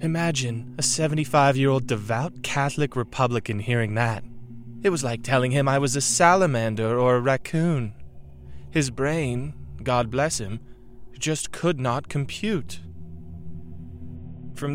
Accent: American